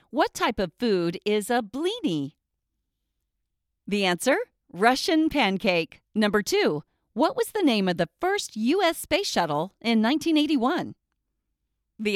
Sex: female